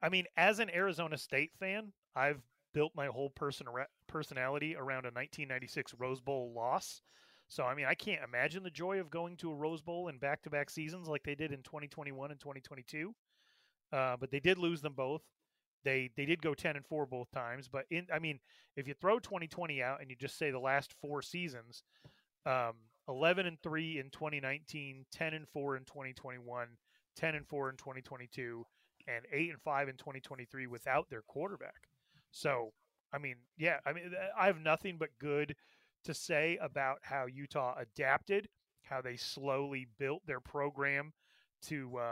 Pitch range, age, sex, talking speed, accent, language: 130-160 Hz, 30-49, male, 180 wpm, American, English